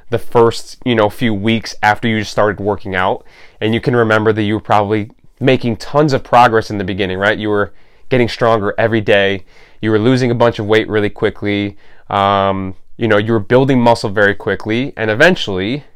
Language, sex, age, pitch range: English, male, 20-39, 105-120 Hz